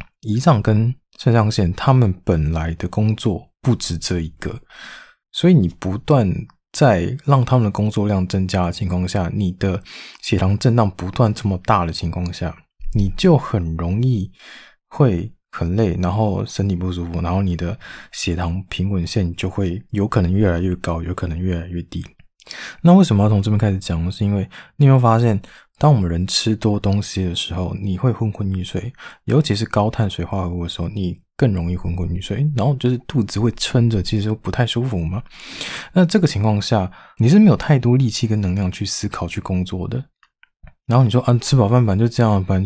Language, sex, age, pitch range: Chinese, male, 20-39, 90-115 Hz